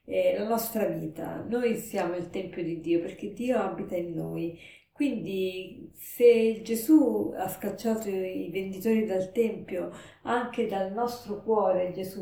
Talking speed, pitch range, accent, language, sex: 140 wpm, 180-225 Hz, native, Italian, female